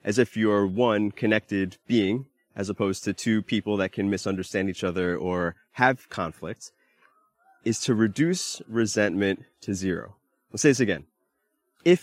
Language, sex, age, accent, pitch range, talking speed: English, male, 30-49, American, 100-125 Hz, 150 wpm